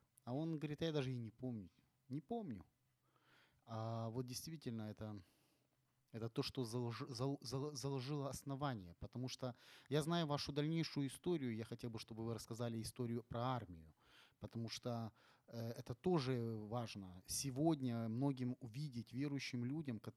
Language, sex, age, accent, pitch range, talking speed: Ukrainian, male, 30-49, native, 115-140 Hz, 135 wpm